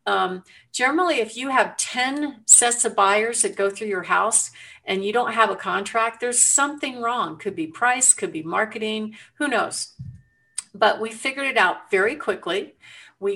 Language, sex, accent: English, female, American